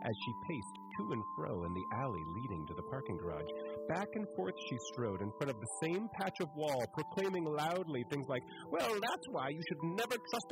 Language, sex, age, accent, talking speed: English, male, 40-59, American, 215 wpm